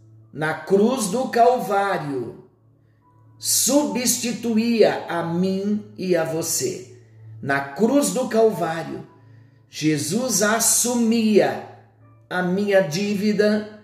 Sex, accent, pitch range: male, Brazilian, 160-220 Hz